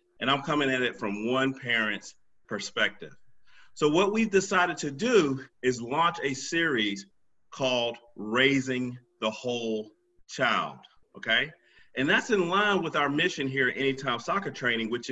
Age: 40-59